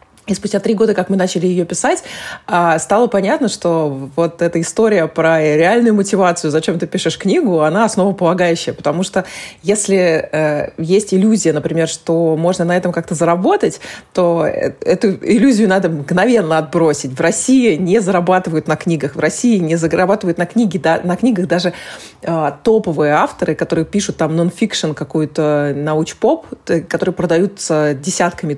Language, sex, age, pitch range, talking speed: Russian, female, 20-39, 155-190 Hz, 140 wpm